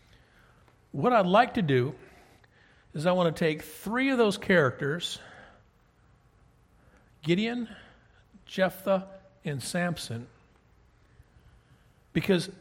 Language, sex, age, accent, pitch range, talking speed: English, male, 50-69, American, 145-195 Hz, 90 wpm